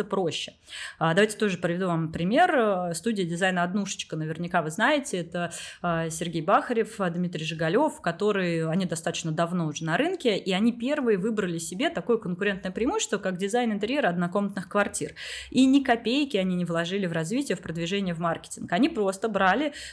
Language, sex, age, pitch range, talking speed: Russian, female, 20-39, 170-225 Hz, 155 wpm